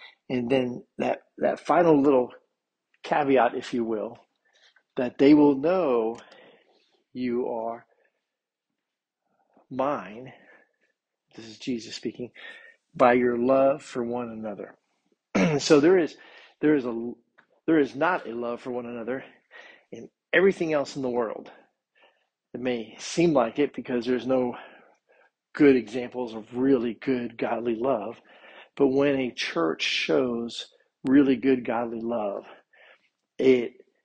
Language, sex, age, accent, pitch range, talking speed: English, male, 50-69, American, 120-140 Hz, 125 wpm